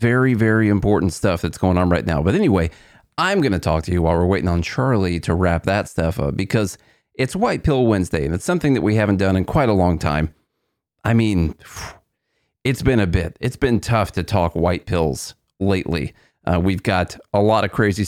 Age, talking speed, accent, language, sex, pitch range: 40-59, 215 wpm, American, English, male, 90-110 Hz